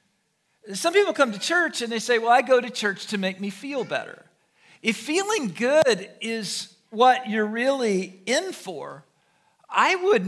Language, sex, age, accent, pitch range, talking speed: English, male, 50-69, American, 200-300 Hz, 170 wpm